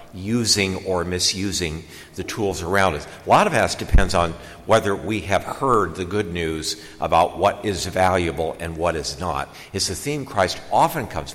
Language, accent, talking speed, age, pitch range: English, American, 180 wpm, 60-79, 90-115 Hz